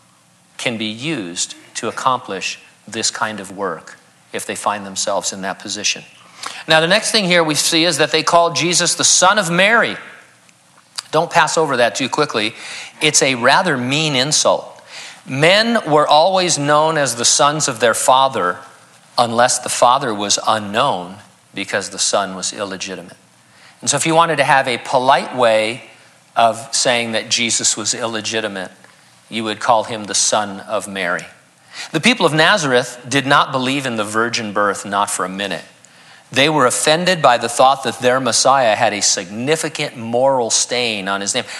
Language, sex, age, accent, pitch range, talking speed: English, male, 50-69, American, 105-155 Hz, 170 wpm